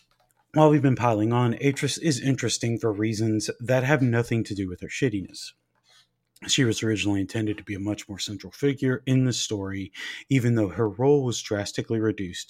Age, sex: 30-49, male